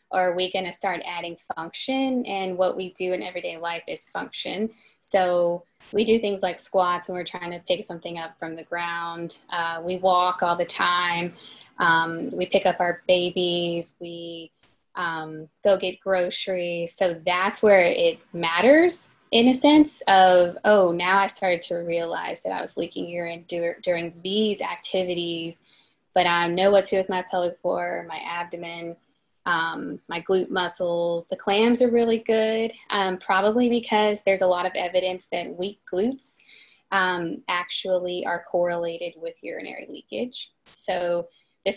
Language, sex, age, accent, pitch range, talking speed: English, female, 20-39, American, 175-205 Hz, 165 wpm